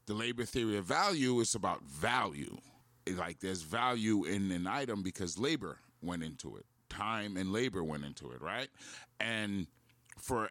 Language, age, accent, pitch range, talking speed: English, 30-49, American, 95-120 Hz, 160 wpm